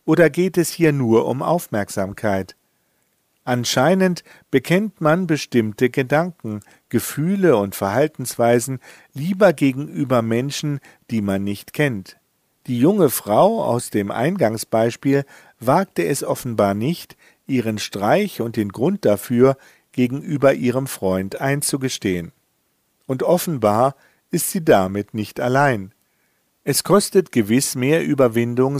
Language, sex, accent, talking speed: German, male, German, 115 wpm